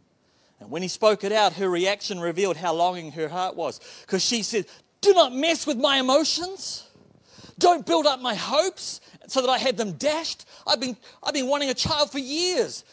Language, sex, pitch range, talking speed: English, male, 165-255 Hz, 200 wpm